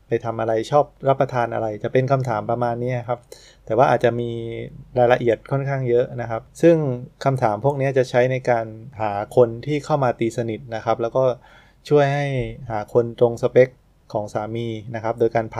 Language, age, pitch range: Thai, 20-39, 110-130 Hz